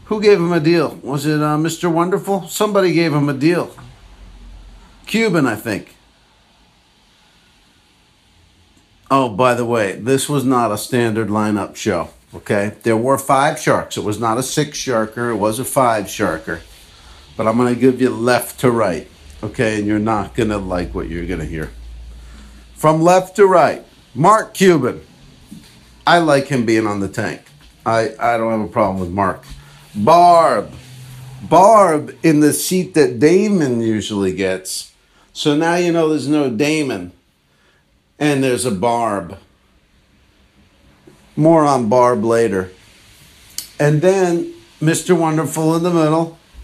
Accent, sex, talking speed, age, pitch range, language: American, male, 150 wpm, 50-69, 105-155 Hz, English